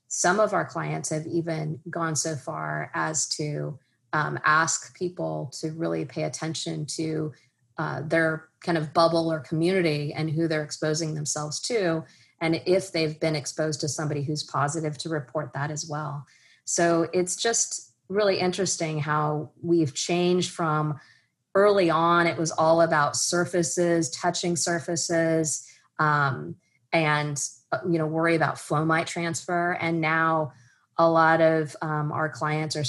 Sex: female